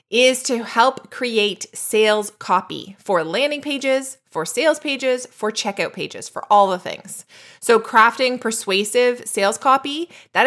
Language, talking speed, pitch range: English, 145 wpm, 185-230 Hz